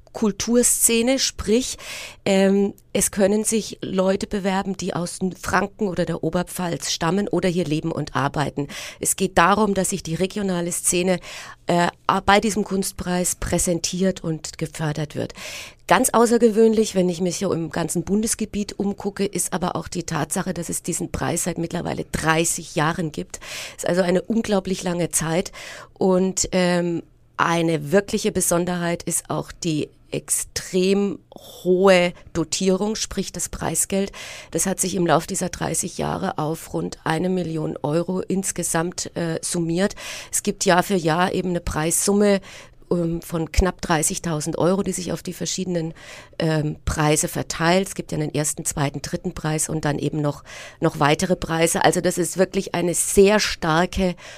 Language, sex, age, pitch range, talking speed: German, female, 30-49, 165-195 Hz, 155 wpm